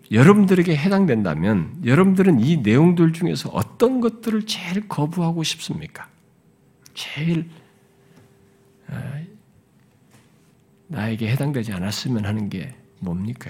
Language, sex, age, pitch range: Korean, male, 50-69, 120-195 Hz